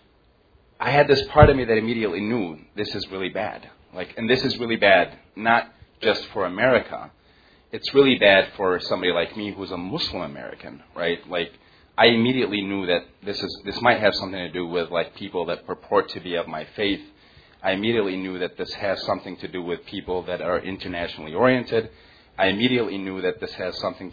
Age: 30-49